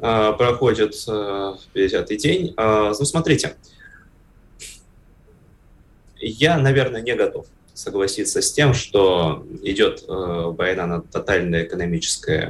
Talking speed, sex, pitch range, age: 85 wpm, male, 85-120 Hz, 20-39